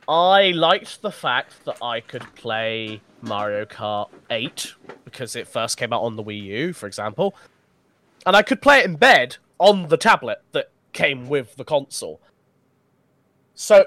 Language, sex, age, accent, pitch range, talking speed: English, male, 20-39, British, 125-185 Hz, 165 wpm